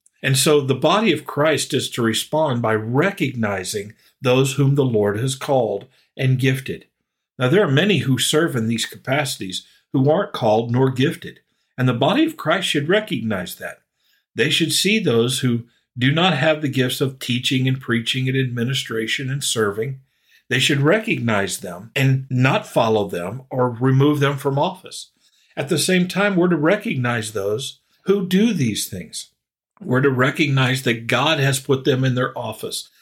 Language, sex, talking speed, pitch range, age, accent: English, male, 175 wpm, 120-150 Hz, 50-69, American